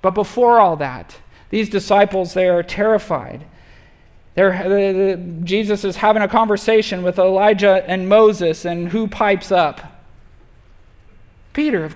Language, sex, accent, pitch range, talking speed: English, male, American, 175-230 Hz, 125 wpm